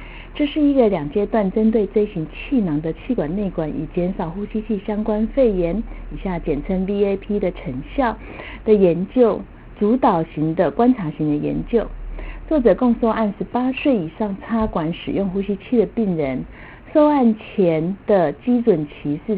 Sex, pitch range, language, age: female, 175-235 Hz, Chinese, 50-69